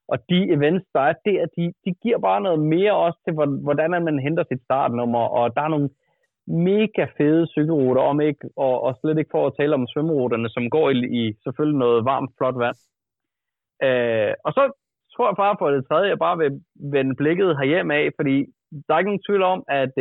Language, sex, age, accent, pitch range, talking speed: Danish, male, 30-49, native, 130-175 Hz, 205 wpm